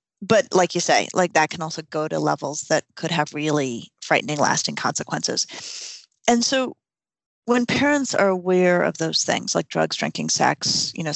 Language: English